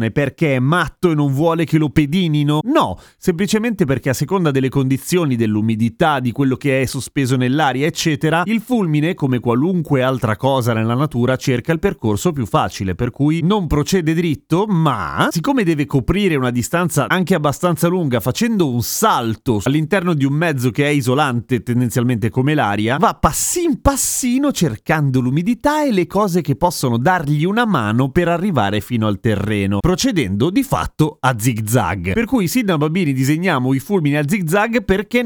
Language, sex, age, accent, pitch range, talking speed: Italian, male, 30-49, native, 120-175 Hz, 165 wpm